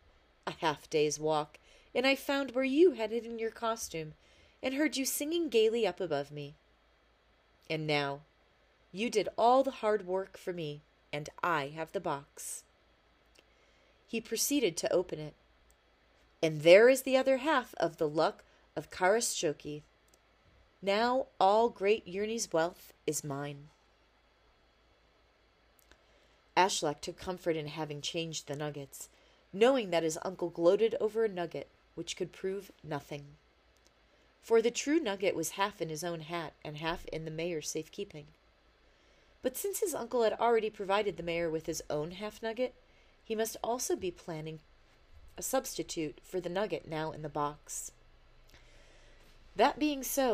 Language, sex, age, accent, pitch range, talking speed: English, female, 30-49, American, 155-230 Hz, 150 wpm